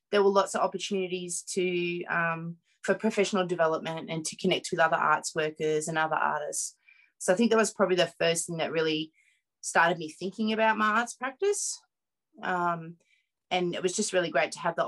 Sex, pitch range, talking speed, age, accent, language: female, 170-205 Hz, 195 wpm, 20-39, Australian, English